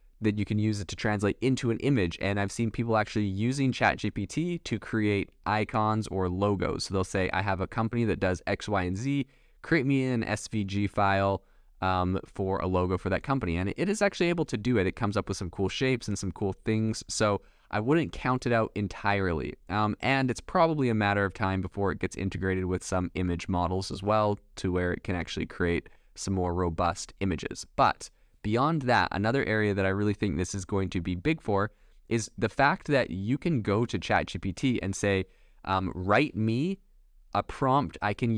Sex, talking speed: male, 210 wpm